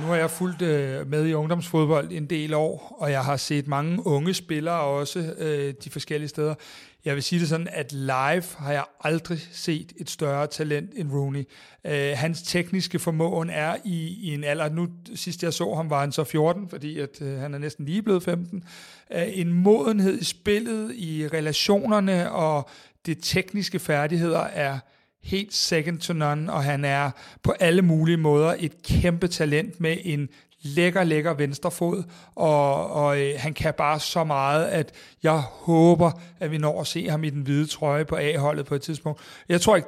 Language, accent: Danish, native